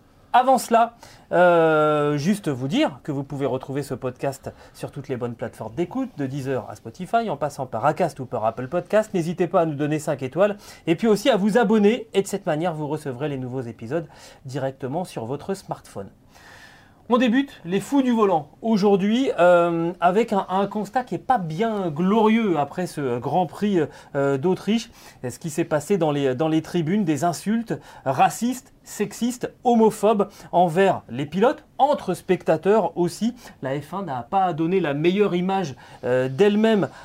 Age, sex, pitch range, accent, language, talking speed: 30-49, male, 145-205 Hz, French, French, 175 wpm